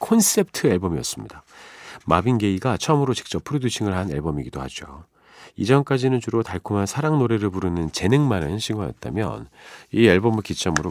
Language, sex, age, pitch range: Korean, male, 40-59, 90-130 Hz